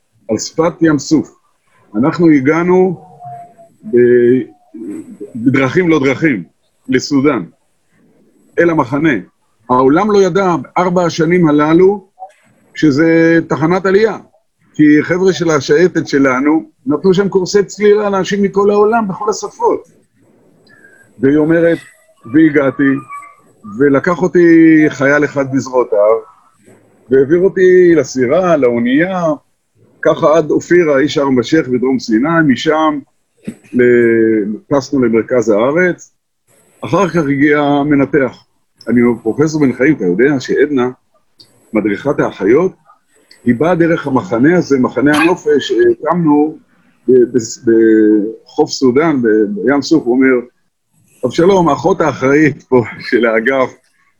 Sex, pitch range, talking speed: male, 130-175 Hz, 105 wpm